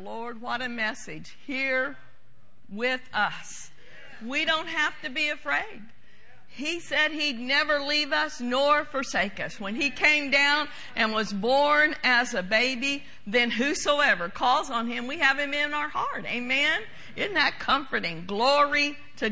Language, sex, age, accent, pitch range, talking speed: English, female, 50-69, American, 235-295 Hz, 150 wpm